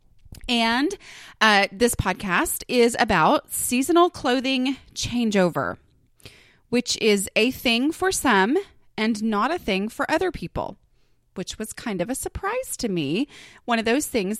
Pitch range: 185-260 Hz